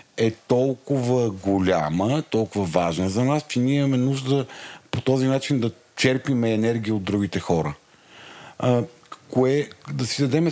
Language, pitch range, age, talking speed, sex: Bulgarian, 105-135 Hz, 40-59, 145 wpm, male